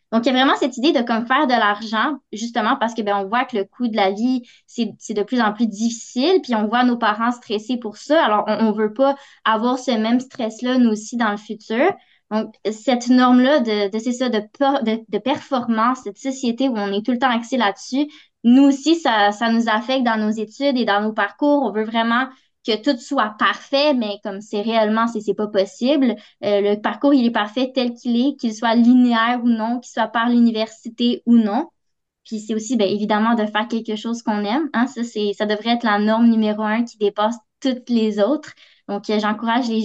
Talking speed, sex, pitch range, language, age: 225 wpm, female, 210-250 Hz, French, 20-39